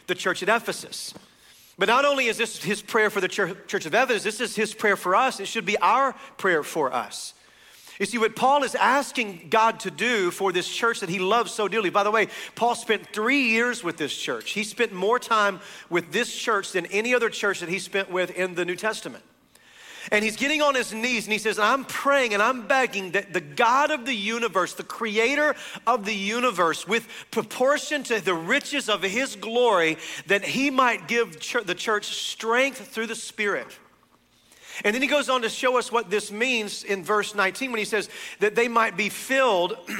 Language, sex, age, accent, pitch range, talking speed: English, male, 40-59, American, 200-250 Hz, 210 wpm